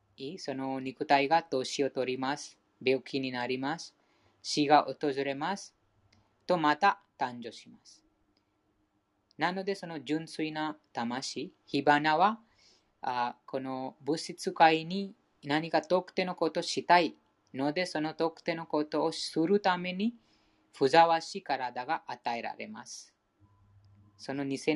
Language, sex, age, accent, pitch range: Japanese, female, 20-39, Indian, 120-165 Hz